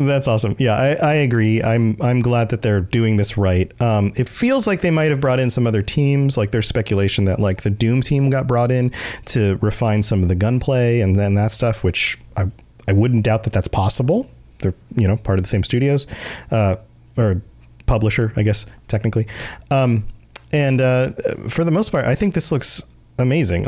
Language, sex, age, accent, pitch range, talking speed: English, male, 30-49, American, 105-140 Hz, 205 wpm